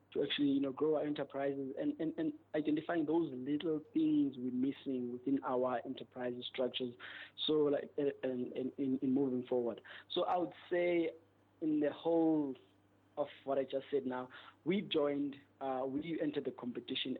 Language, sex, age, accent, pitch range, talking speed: English, male, 20-39, South African, 130-150 Hz, 165 wpm